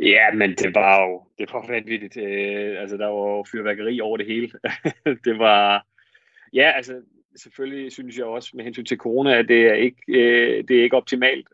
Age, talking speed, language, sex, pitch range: 30-49, 180 wpm, Danish, male, 110-125 Hz